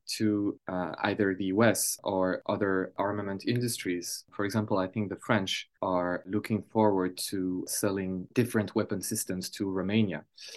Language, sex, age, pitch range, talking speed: English, male, 20-39, 95-110 Hz, 140 wpm